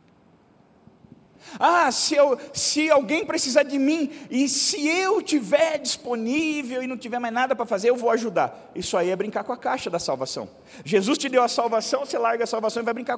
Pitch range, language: 185-255 Hz, Portuguese